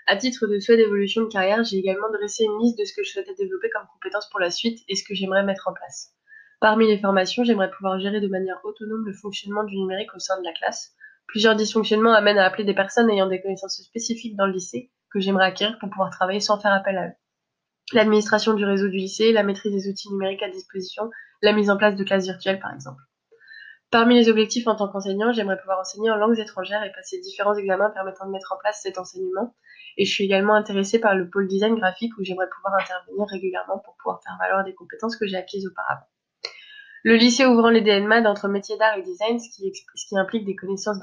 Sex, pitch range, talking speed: female, 190-220 Hz, 230 wpm